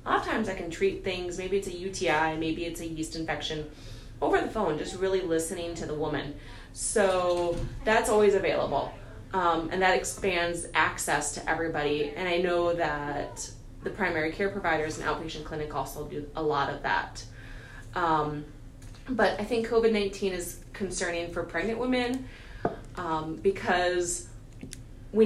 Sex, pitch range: female, 150-190 Hz